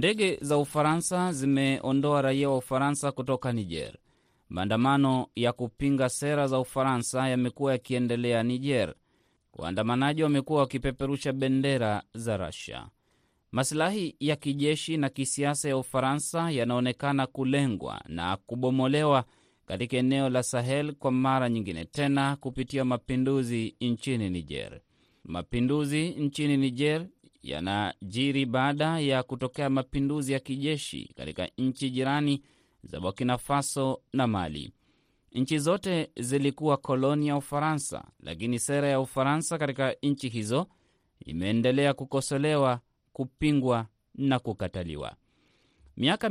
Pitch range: 120-145 Hz